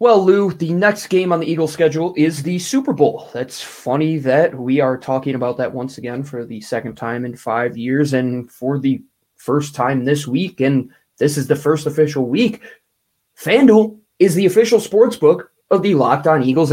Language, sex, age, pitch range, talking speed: English, male, 20-39, 130-170 Hz, 195 wpm